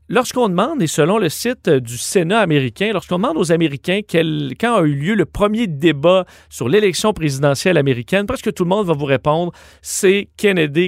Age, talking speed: 40-59, 190 wpm